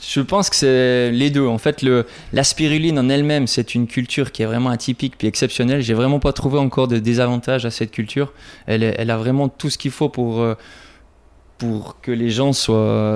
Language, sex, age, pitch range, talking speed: French, male, 20-39, 115-130 Hz, 210 wpm